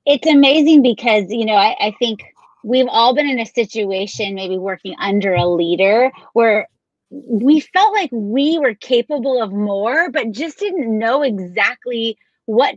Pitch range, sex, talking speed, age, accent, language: 200-265 Hz, female, 160 wpm, 30-49, American, English